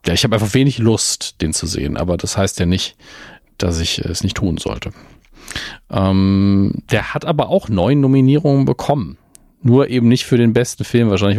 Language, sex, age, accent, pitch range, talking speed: German, male, 40-59, German, 95-120 Hz, 190 wpm